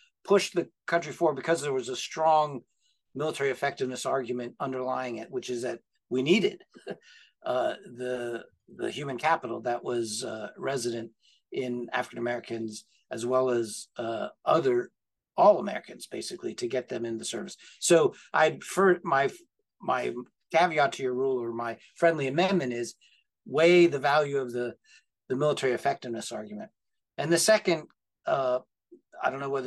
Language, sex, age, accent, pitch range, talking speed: English, male, 50-69, American, 125-180 Hz, 150 wpm